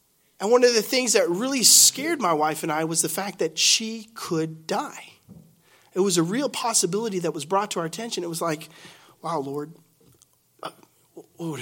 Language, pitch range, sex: English, 160-210 Hz, male